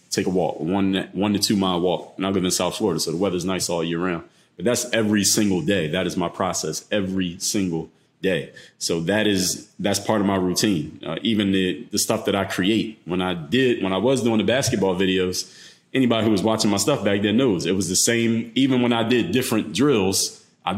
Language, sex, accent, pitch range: English, male, American, 95-120 Hz